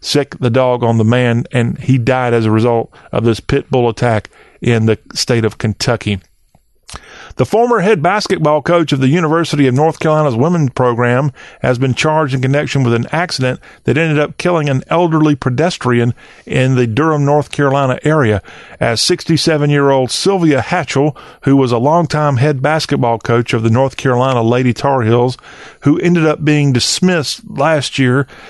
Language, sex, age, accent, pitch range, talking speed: English, male, 40-59, American, 120-150 Hz, 175 wpm